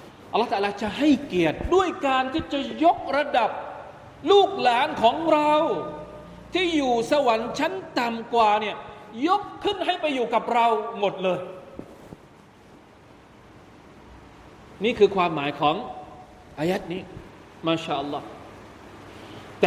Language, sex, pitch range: Thai, male, 180-280 Hz